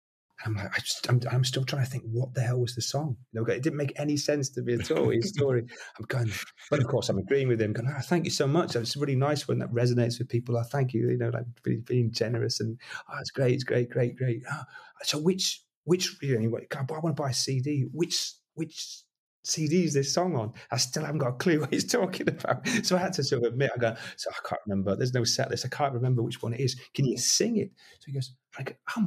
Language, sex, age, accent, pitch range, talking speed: English, male, 30-49, British, 115-145 Hz, 275 wpm